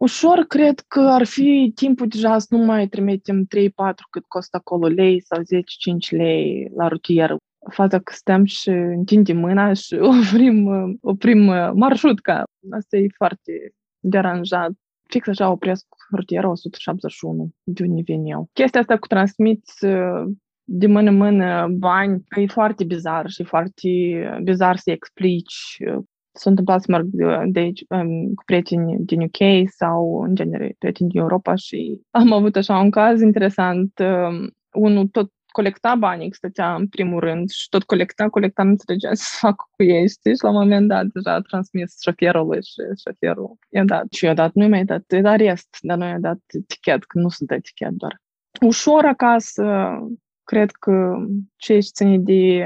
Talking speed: 165 wpm